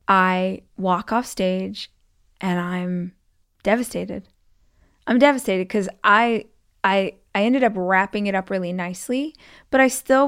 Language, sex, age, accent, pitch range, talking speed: English, female, 20-39, American, 180-210 Hz, 135 wpm